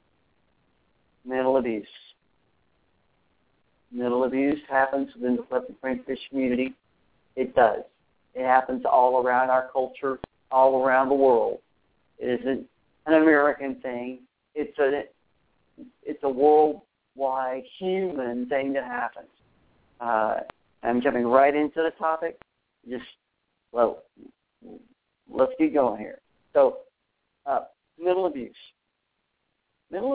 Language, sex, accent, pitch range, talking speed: English, male, American, 125-150 Hz, 105 wpm